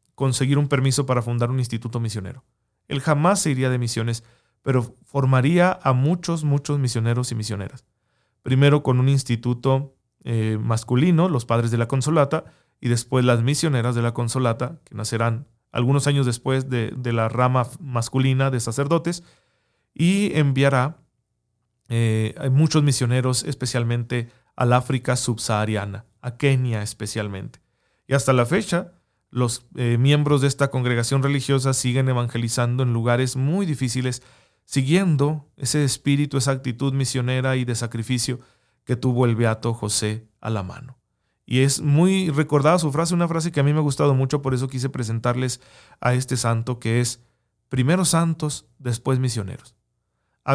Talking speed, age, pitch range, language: 150 wpm, 40-59, 120-140 Hz, Spanish